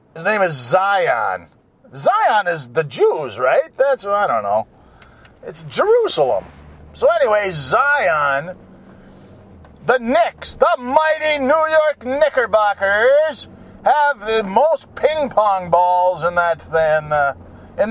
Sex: male